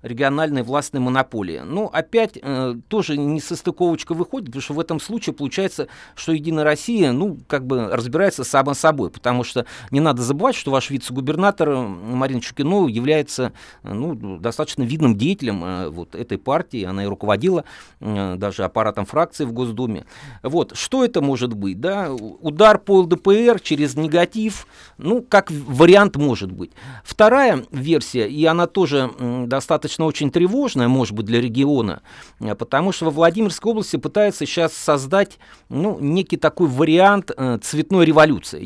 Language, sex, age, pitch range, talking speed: Russian, male, 40-59, 130-175 Hz, 145 wpm